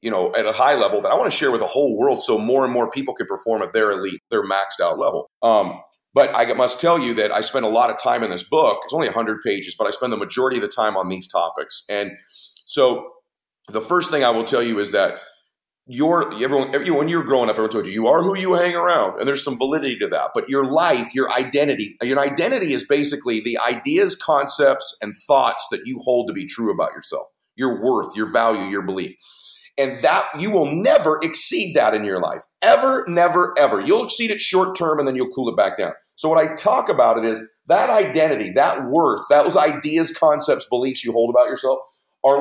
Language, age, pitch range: English, 40-59, 125-195 Hz